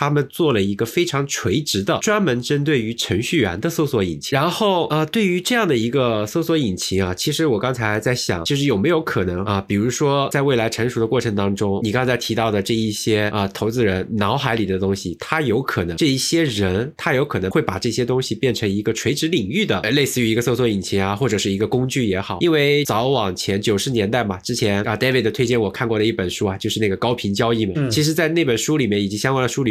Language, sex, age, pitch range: English, male, 20-39, 100-135 Hz